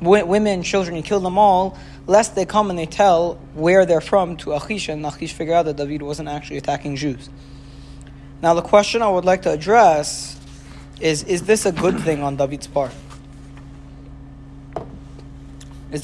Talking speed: 170 wpm